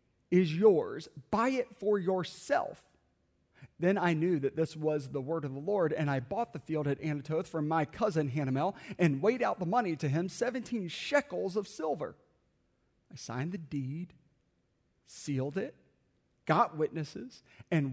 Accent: American